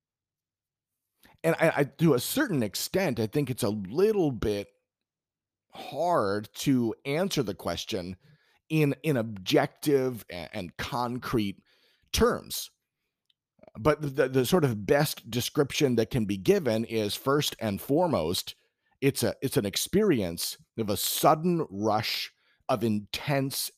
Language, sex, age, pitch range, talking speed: English, male, 40-59, 105-140 Hz, 130 wpm